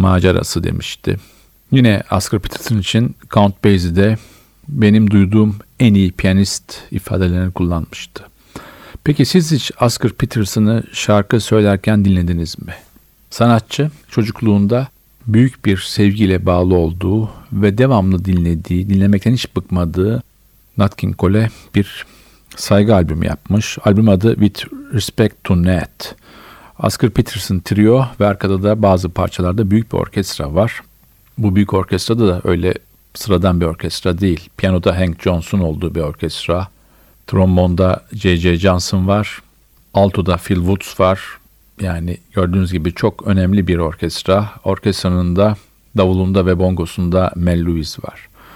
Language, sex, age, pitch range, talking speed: Turkish, male, 50-69, 90-110 Hz, 125 wpm